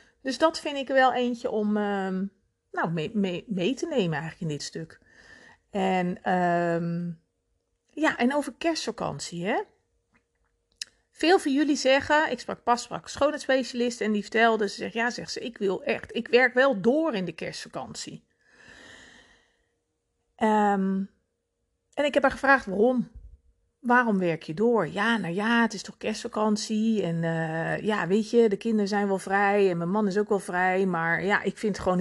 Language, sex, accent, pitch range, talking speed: Dutch, female, Dutch, 175-245 Hz, 175 wpm